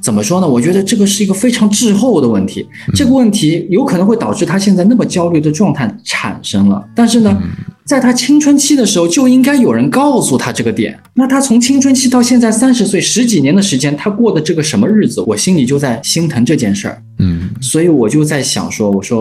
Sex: male